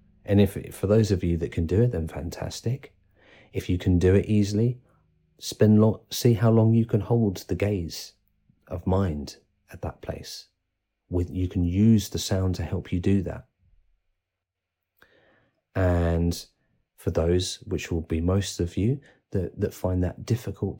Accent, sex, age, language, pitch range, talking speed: British, male, 40-59, English, 85-105 Hz, 165 wpm